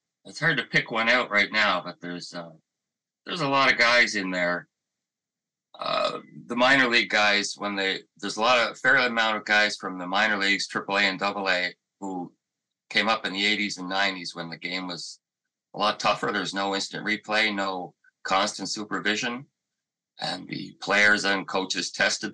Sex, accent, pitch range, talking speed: male, American, 95-120 Hz, 185 wpm